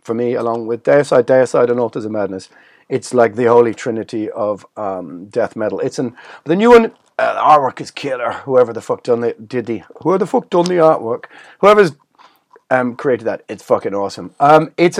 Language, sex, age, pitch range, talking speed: English, male, 30-49, 125-165 Hz, 200 wpm